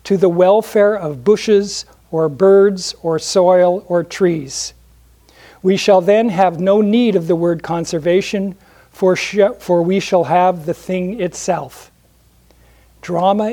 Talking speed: 135 wpm